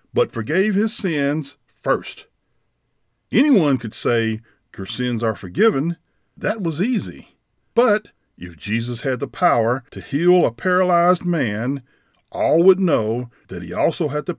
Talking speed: 140 wpm